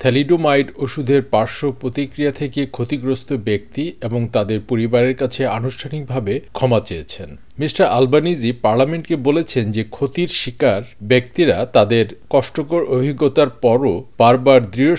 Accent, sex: native, male